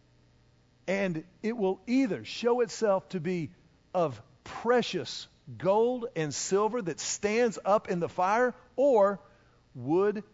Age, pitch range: 40-59, 150-210 Hz